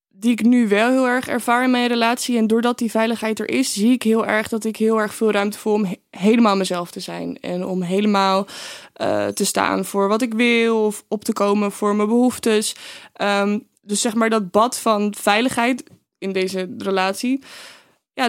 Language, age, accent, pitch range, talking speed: Dutch, 20-39, Dutch, 200-245 Hz, 195 wpm